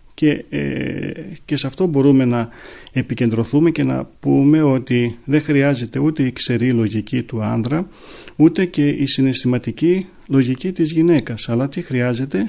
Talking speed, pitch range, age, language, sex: 145 wpm, 120-150 Hz, 40-59, Greek, male